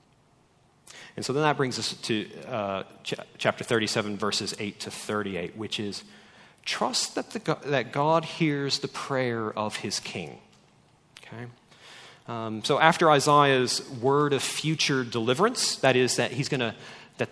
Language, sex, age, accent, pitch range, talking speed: English, male, 40-59, American, 125-150 Hz, 155 wpm